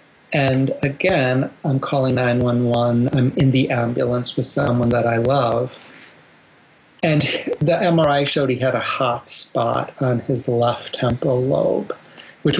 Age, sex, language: 40-59, male, English